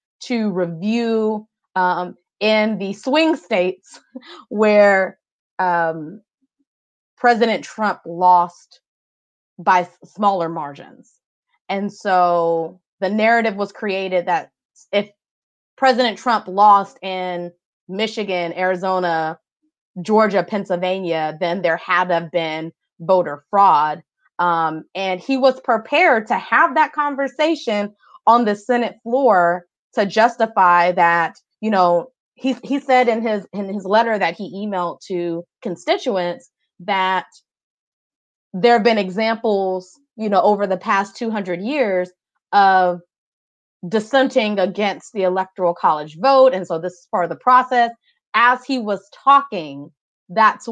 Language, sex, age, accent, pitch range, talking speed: English, female, 20-39, American, 175-225 Hz, 120 wpm